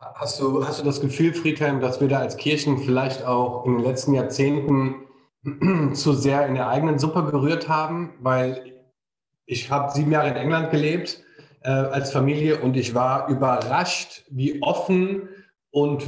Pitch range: 130-155 Hz